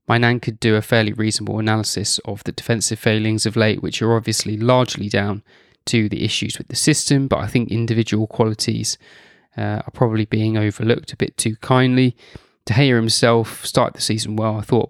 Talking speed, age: 195 wpm, 20-39